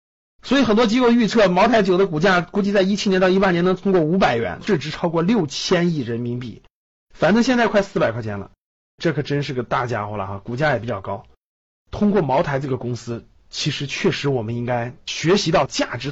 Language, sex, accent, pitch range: Chinese, male, native, 125-195 Hz